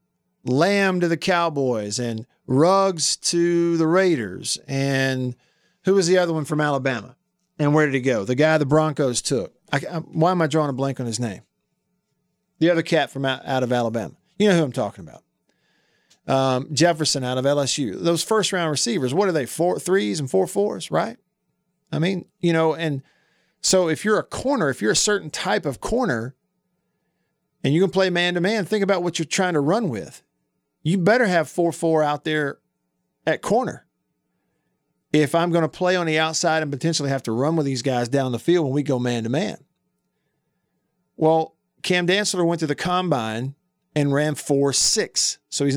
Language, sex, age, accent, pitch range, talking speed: English, male, 40-59, American, 135-180 Hz, 185 wpm